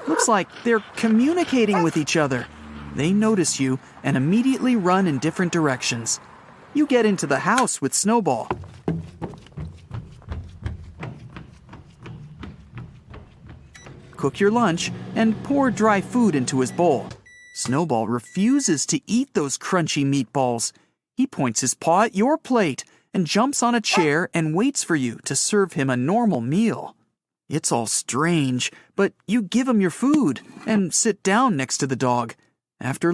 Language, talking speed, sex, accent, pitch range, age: English, 145 wpm, male, American, 140-225 Hz, 40-59